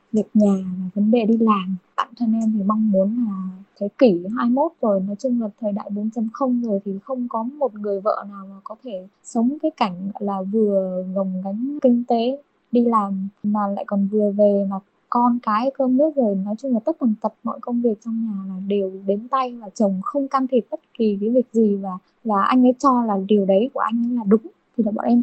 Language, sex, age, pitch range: Vietnamese, female, 10-29, 205-245 Hz